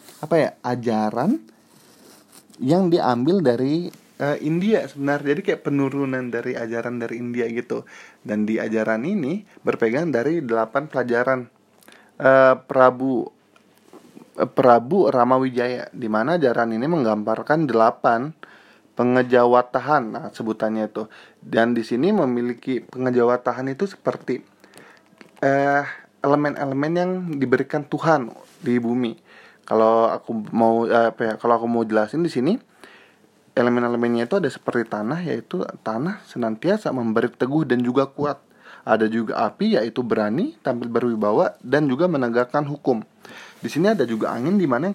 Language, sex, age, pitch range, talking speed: Indonesian, male, 20-39, 115-140 Hz, 130 wpm